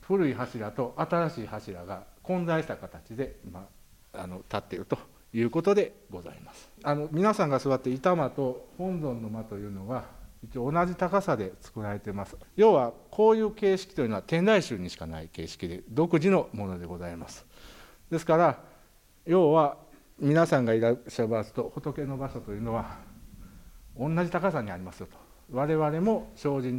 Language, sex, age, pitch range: Japanese, male, 50-69, 100-170 Hz